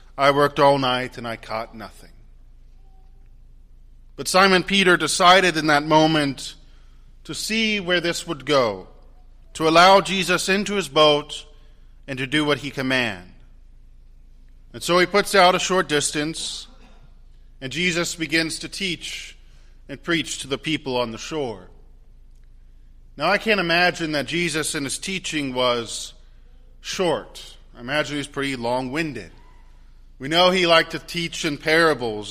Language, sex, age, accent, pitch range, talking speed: English, male, 40-59, American, 130-175 Hz, 145 wpm